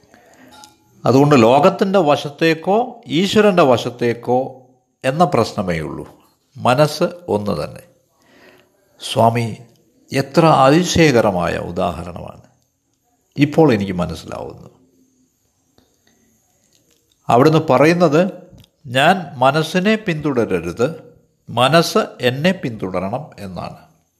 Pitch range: 120-170 Hz